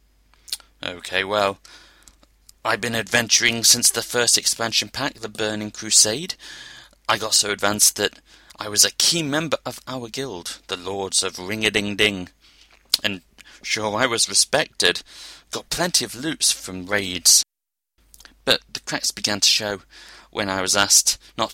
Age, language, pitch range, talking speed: 30-49, English, 95-115 Hz, 150 wpm